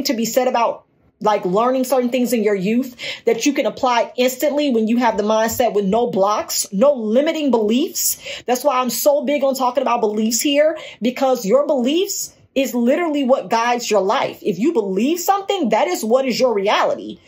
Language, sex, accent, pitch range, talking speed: English, female, American, 215-270 Hz, 195 wpm